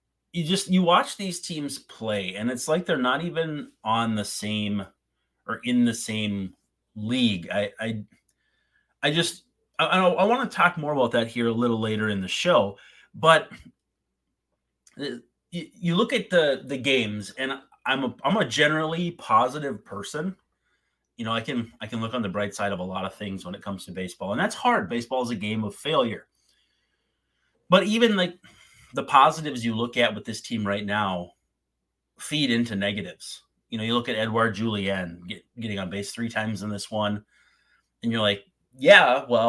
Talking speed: 185 wpm